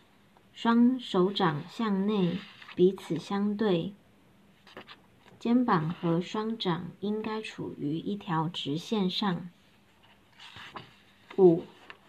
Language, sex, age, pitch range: Chinese, male, 50-69, 175-220 Hz